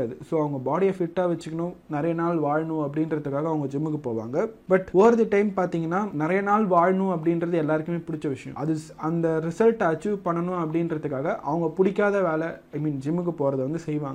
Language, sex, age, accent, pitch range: Tamil, male, 30-49, native, 155-185 Hz